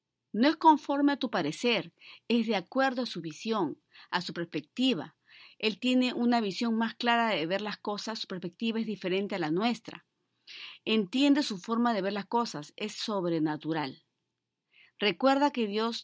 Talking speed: 165 wpm